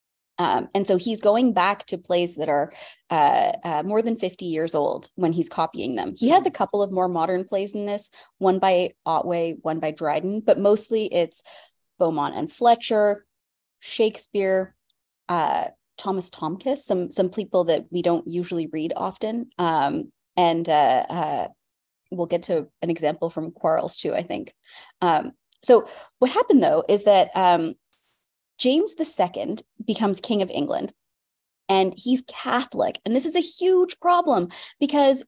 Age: 20-39